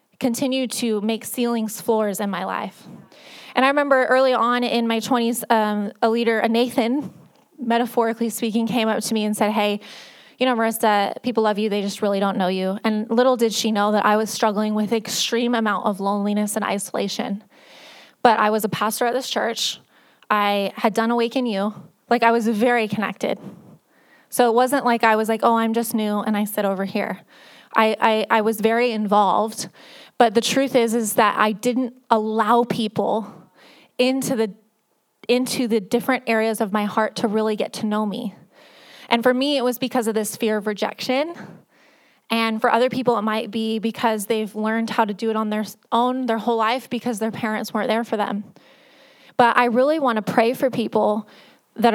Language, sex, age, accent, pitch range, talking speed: English, female, 20-39, American, 215-240 Hz, 195 wpm